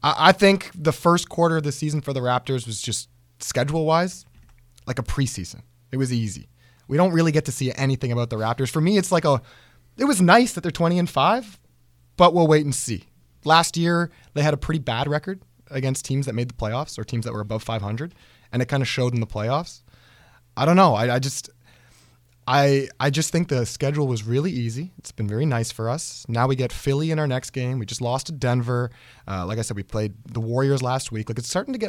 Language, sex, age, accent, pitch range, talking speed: English, male, 20-39, American, 115-150 Hz, 235 wpm